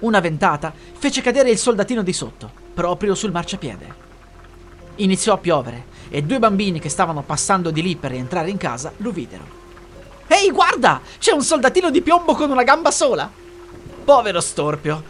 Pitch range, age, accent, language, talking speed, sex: 165-235 Hz, 30-49, native, Italian, 165 wpm, male